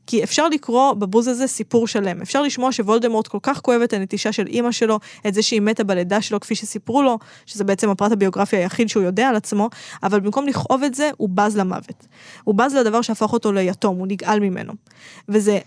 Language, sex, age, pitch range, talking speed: Hebrew, female, 20-39, 205-245 Hz, 205 wpm